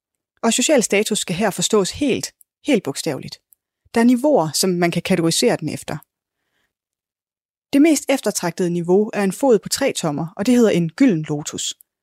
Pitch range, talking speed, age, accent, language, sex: 170-230 Hz, 170 wpm, 20-39, native, Danish, female